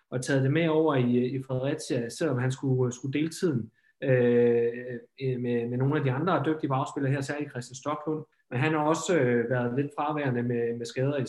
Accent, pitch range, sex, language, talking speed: native, 125-150 Hz, male, Danish, 190 wpm